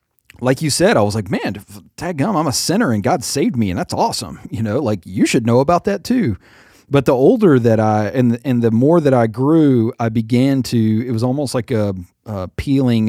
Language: English